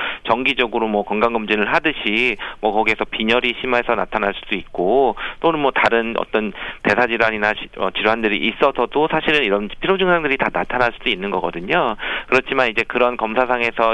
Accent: native